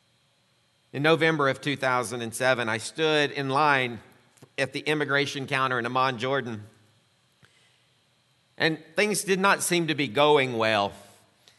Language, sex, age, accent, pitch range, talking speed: English, male, 50-69, American, 115-140 Hz, 125 wpm